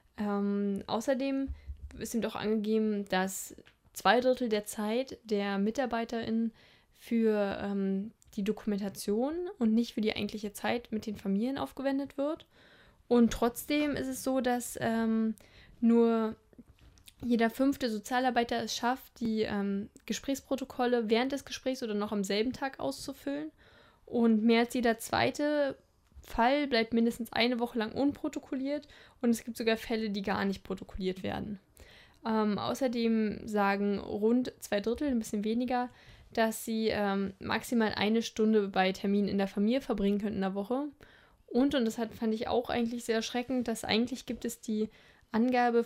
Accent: German